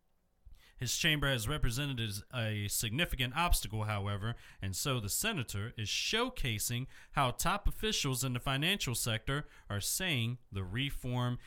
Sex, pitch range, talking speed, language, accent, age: male, 115-150 Hz, 130 wpm, English, American, 40-59